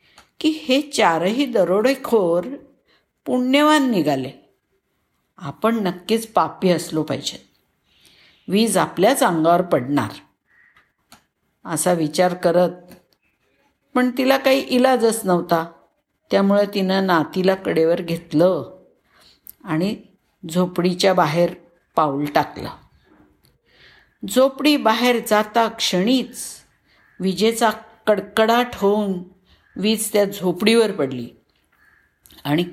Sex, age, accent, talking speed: female, 50-69, native, 85 wpm